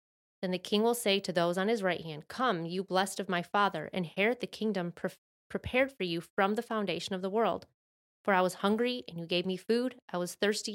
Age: 20-39